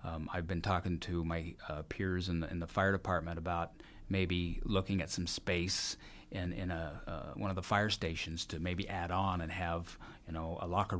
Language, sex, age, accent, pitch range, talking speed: English, male, 30-49, American, 90-115 Hz, 215 wpm